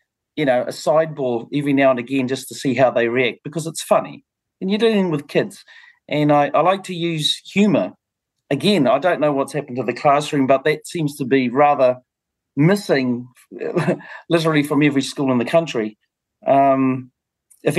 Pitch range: 125-155 Hz